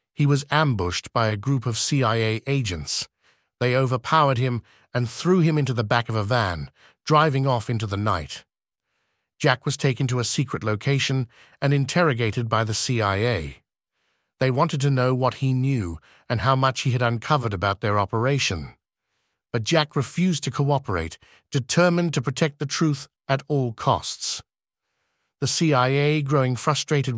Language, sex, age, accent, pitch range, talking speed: English, male, 50-69, British, 115-145 Hz, 155 wpm